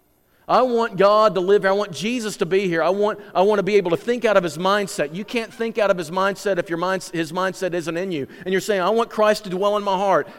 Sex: male